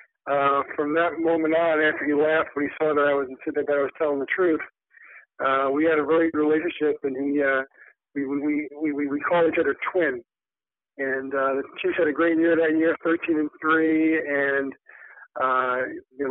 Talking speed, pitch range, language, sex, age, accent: 205 wpm, 135-160 Hz, English, male, 50-69, American